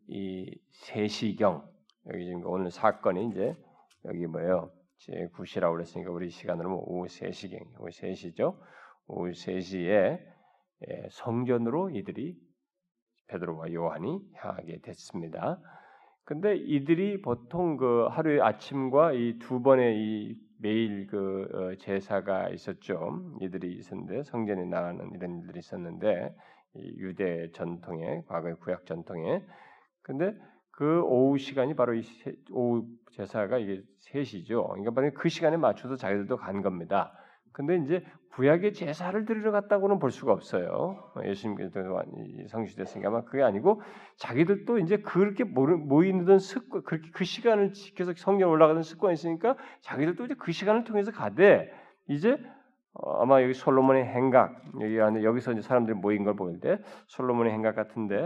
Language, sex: Korean, male